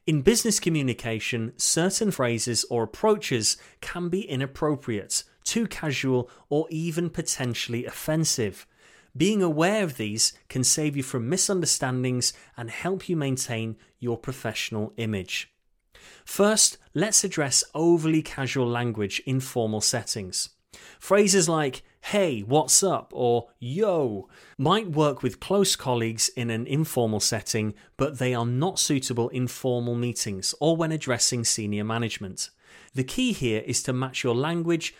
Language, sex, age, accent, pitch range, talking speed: English, male, 30-49, British, 120-165 Hz, 135 wpm